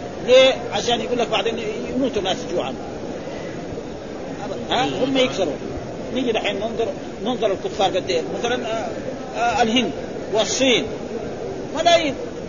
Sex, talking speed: male, 95 wpm